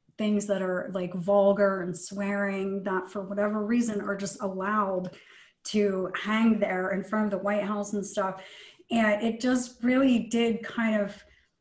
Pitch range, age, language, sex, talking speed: 195-225 Hz, 30-49, English, female, 165 wpm